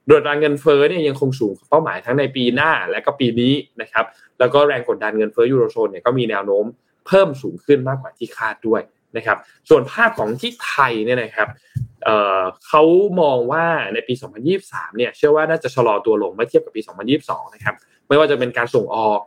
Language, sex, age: Thai, male, 20-39